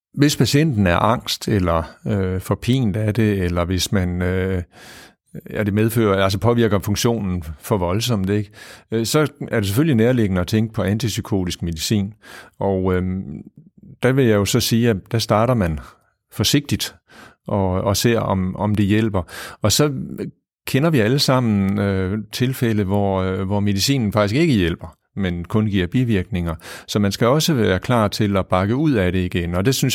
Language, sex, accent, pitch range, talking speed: Danish, male, native, 95-115 Hz, 175 wpm